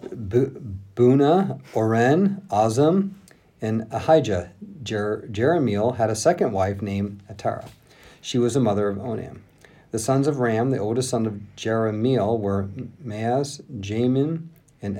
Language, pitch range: English, 105-135 Hz